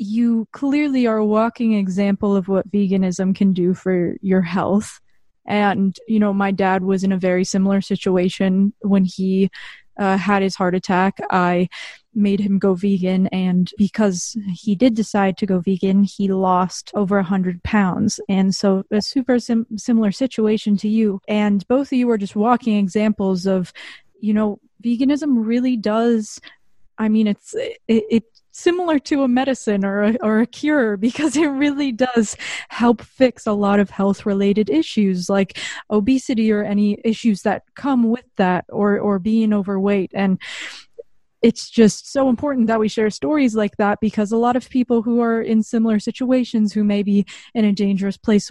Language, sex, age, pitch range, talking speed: English, female, 20-39, 195-230 Hz, 175 wpm